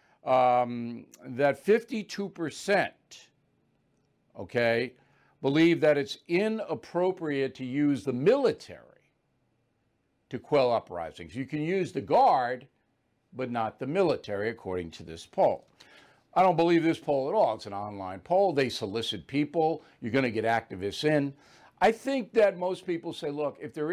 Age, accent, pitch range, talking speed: 60-79, American, 120-170 Hz, 145 wpm